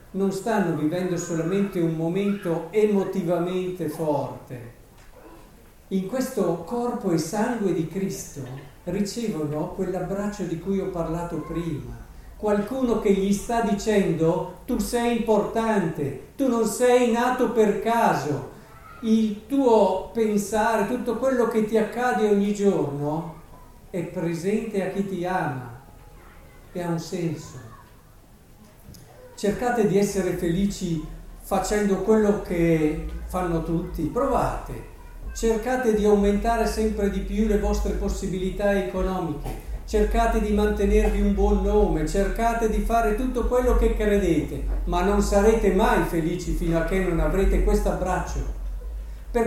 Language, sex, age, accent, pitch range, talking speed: Italian, male, 50-69, native, 170-225 Hz, 125 wpm